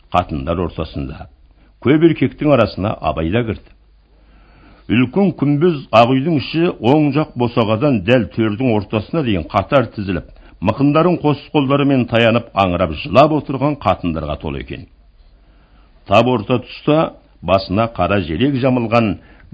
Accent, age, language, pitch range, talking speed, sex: Turkish, 60-79, Russian, 90-130 Hz, 85 wpm, male